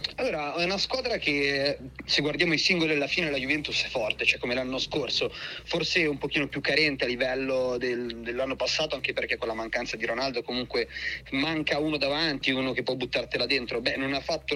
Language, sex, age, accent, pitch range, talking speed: Italian, male, 30-49, native, 135-160 Hz, 200 wpm